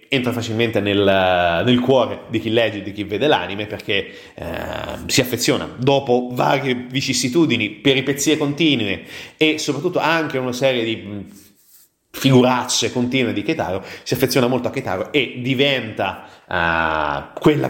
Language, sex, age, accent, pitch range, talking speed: Italian, male, 30-49, native, 105-135 Hz, 140 wpm